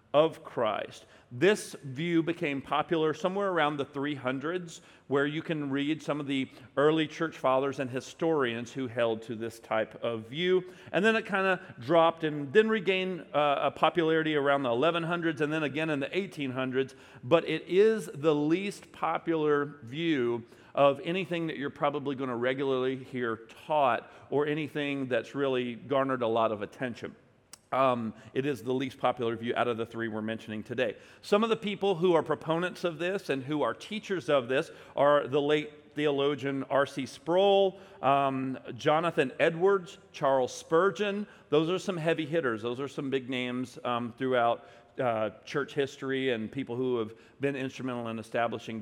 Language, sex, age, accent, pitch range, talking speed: English, male, 40-59, American, 125-165 Hz, 170 wpm